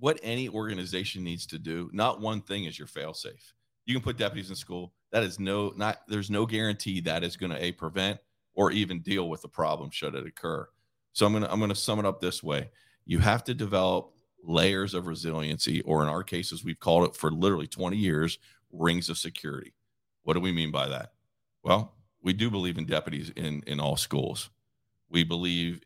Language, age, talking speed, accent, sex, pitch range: English, 40-59, 205 wpm, American, male, 85-105 Hz